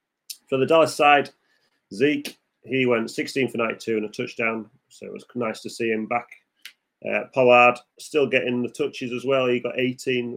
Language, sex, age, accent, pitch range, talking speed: English, male, 30-49, British, 105-130 Hz, 185 wpm